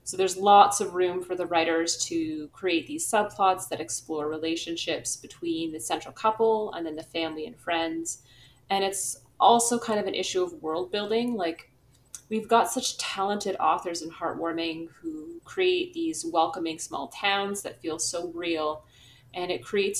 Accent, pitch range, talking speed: American, 155-205 Hz, 170 wpm